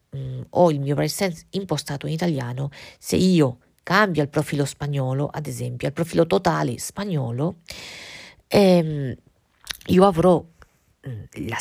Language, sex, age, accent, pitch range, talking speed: Italian, female, 50-69, native, 135-180 Hz, 130 wpm